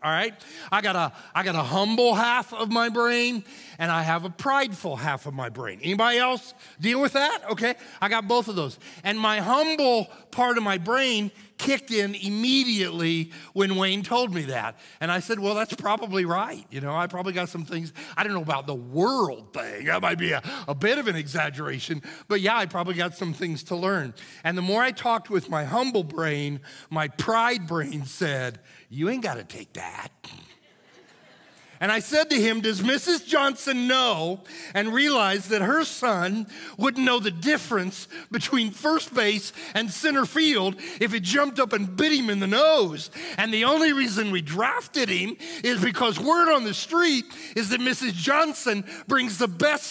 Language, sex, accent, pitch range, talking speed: English, male, American, 175-245 Hz, 190 wpm